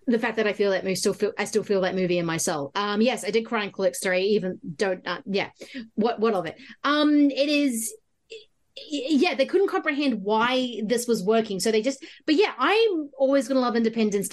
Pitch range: 205-275 Hz